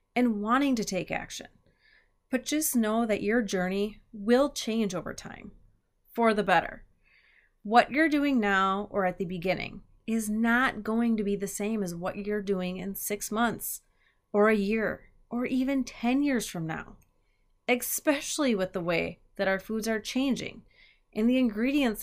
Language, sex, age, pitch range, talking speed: English, female, 30-49, 195-245 Hz, 165 wpm